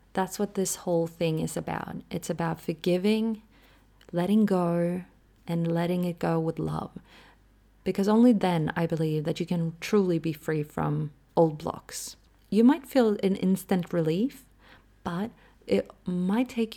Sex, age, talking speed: female, 30-49, 150 wpm